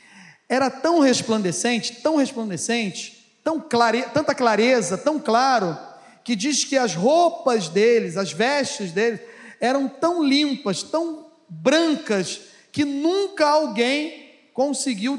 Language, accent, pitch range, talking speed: Portuguese, Brazilian, 215-270 Hz, 105 wpm